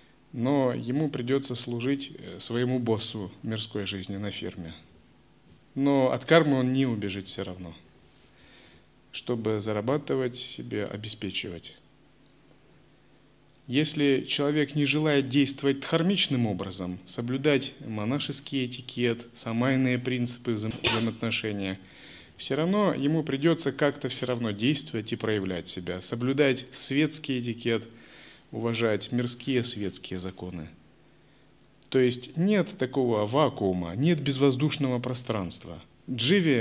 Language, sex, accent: Russian, male, native